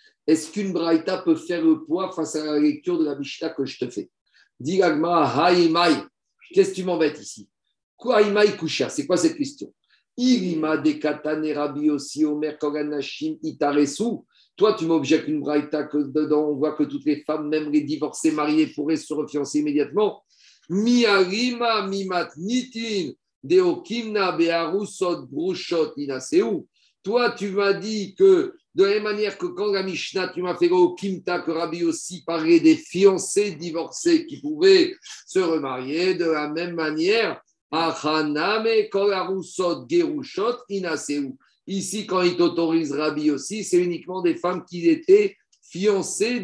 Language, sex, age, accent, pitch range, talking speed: French, male, 50-69, French, 155-210 Hz, 125 wpm